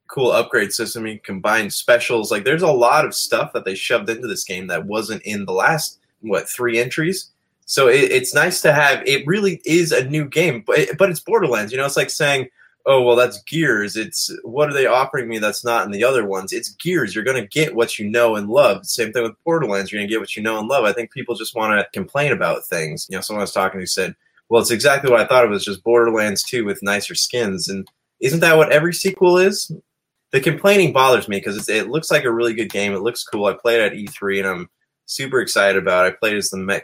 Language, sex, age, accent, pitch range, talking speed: English, male, 20-39, American, 100-155 Hz, 255 wpm